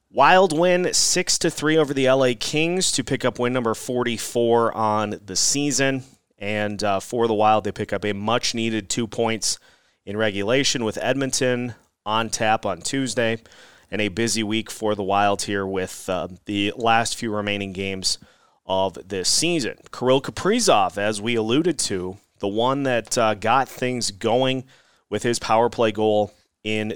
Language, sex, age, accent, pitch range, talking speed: English, male, 30-49, American, 105-125 Hz, 165 wpm